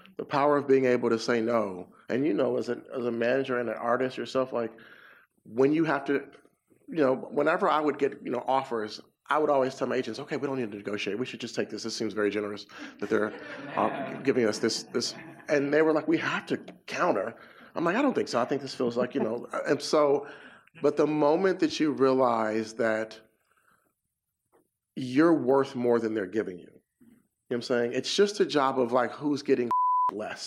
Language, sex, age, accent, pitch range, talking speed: English, male, 40-59, American, 120-145 Hz, 225 wpm